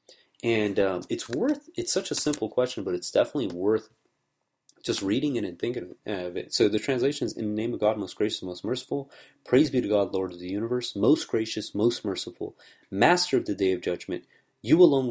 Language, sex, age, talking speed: English, male, 30-49, 210 wpm